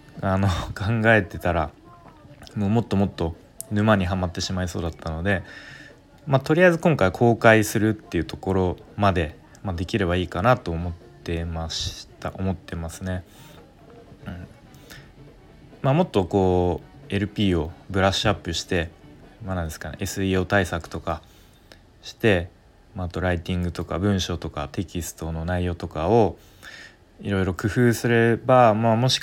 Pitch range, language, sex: 90-115 Hz, Japanese, male